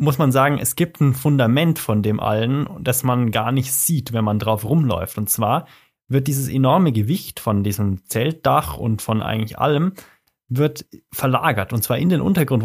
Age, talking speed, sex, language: 20-39, 185 wpm, male, German